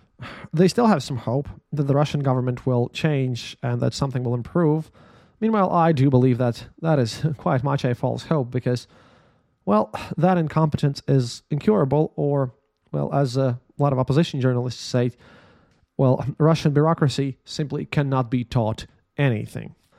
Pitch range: 125-165 Hz